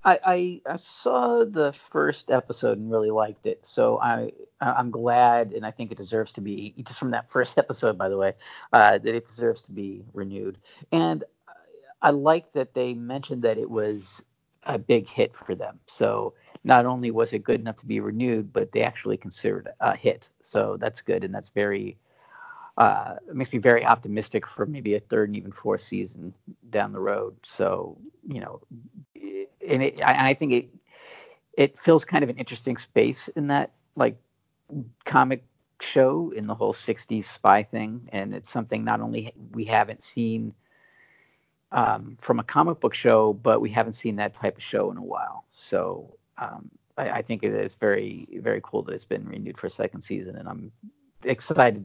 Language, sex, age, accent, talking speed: English, male, 40-59, American, 190 wpm